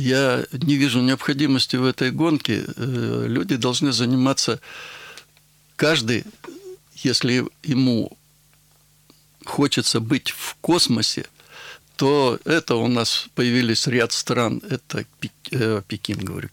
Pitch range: 120-145 Hz